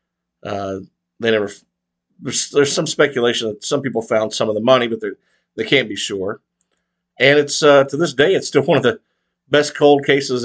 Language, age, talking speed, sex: English, 50-69, 200 wpm, male